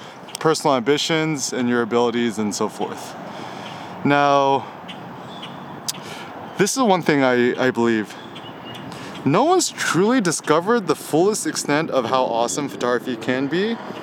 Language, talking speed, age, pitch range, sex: English, 125 wpm, 20-39, 125-155 Hz, male